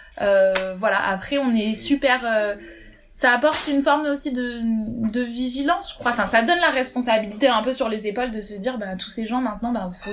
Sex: female